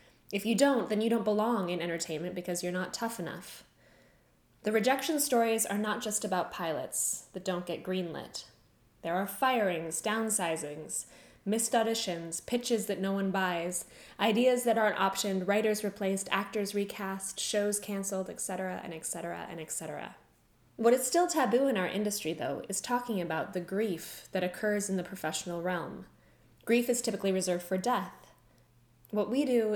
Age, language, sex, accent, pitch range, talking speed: 10-29, English, female, American, 180-220 Hz, 160 wpm